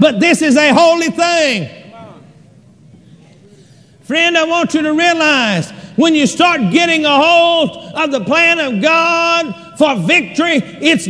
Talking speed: 140 wpm